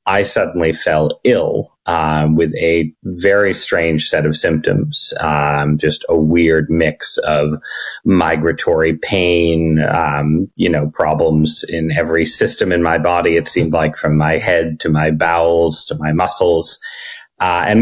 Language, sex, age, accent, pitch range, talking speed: English, male, 30-49, American, 75-85 Hz, 150 wpm